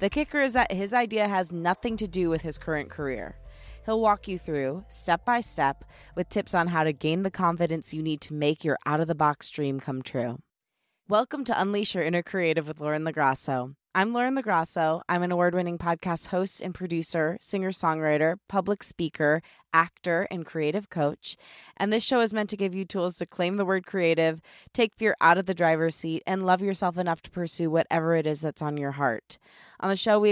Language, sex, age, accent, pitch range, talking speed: English, female, 20-39, American, 160-195 Hz, 200 wpm